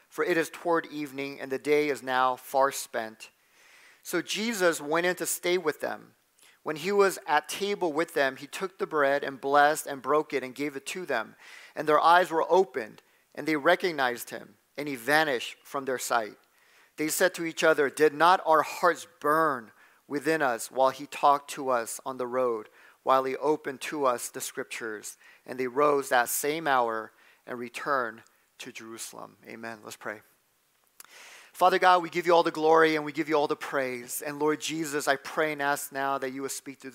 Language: English